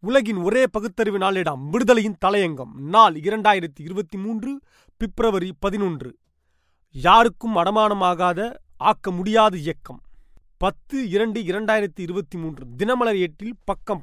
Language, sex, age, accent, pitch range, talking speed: Tamil, male, 30-49, native, 175-220 Hz, 105 wpm